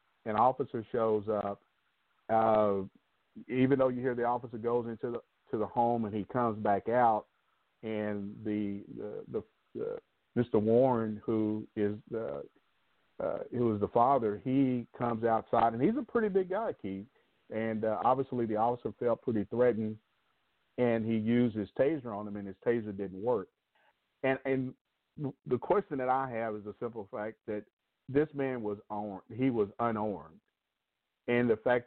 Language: English